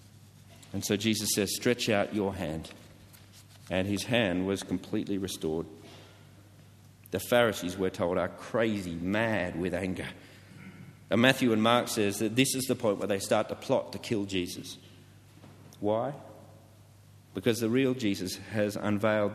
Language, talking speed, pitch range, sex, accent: English, 150 wpm, 100-115 Hz, male, Australian